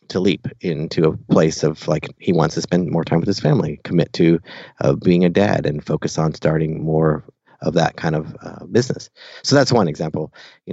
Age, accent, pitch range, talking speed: 30-49, American, 85-105 Hz, 215 wpm